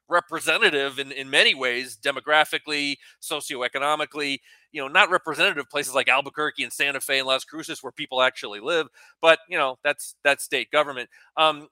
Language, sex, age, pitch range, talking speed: English, male, 30-49, 140-180 Hz, 165 wpm